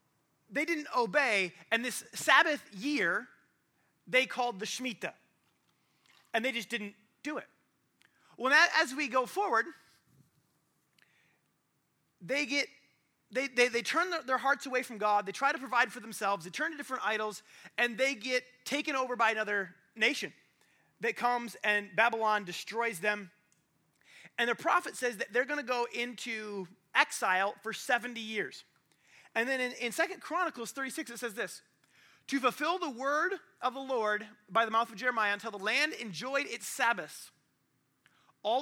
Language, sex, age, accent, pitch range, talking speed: English, male, 30-49, American, 200-255 Hz, 150 wpm